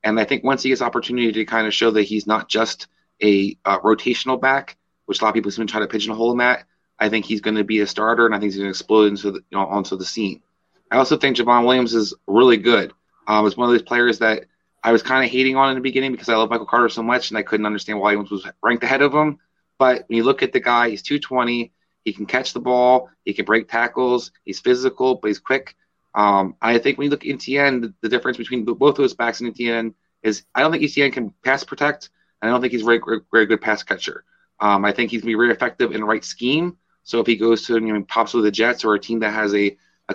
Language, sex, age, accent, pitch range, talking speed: English, male, 30-49, American, 105-125 Hz, 280 wpm